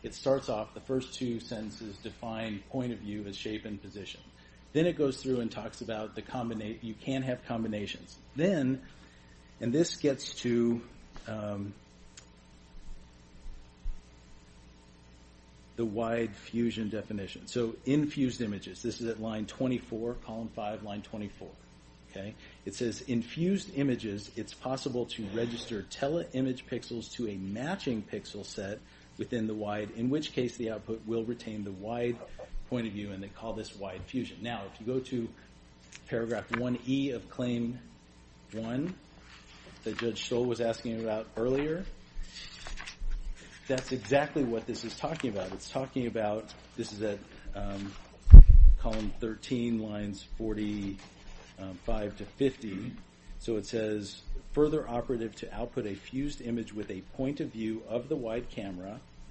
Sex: male